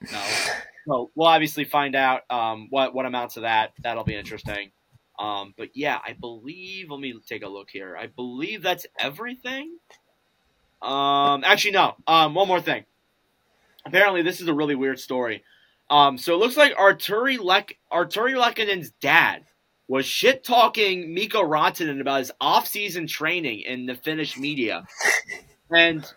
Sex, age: male, 20-39